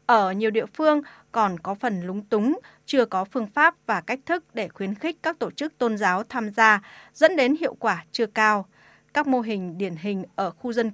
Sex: female